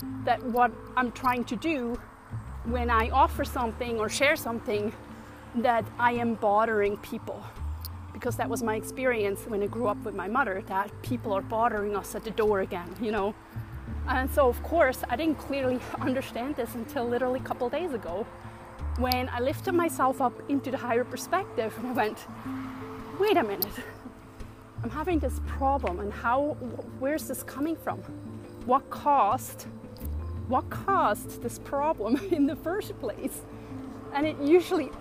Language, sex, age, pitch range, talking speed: English, female, 30-49, 210-280 Hz, 160 wpm